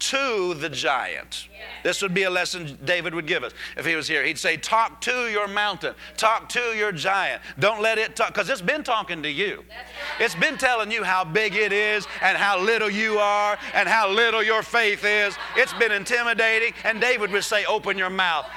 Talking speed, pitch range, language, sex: 210 wpm, 190-235 Hz, English, male